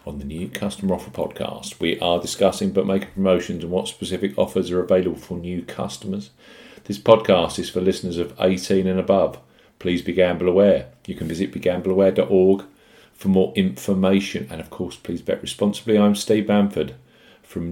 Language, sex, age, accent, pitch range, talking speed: English, male, 40-59, British, 90-110 Hz, 170 wpm